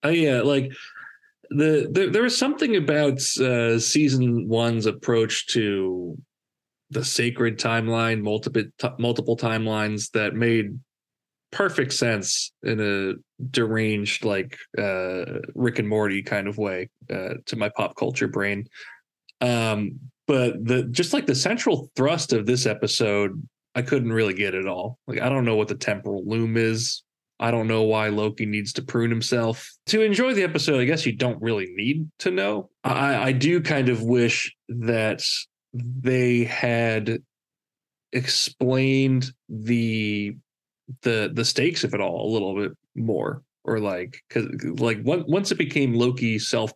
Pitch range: 110-130 Hz